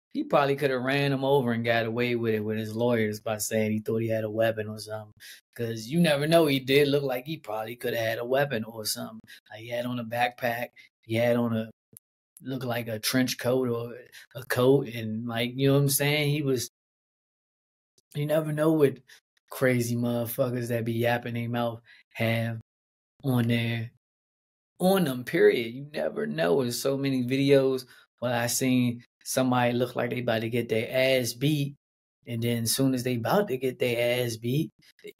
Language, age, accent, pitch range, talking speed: English, 20-39, American, 115-140 Hz, 205 wpm